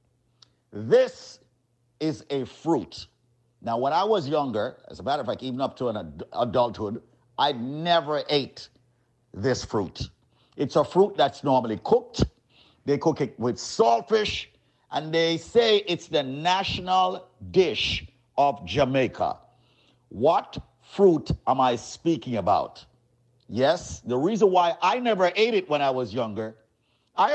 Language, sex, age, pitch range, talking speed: English, male, 50-69, 130-215 Hz, 140 wpm